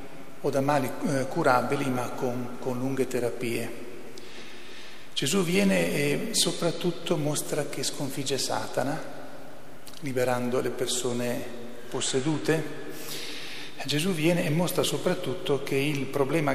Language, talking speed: Italian, 105 wpm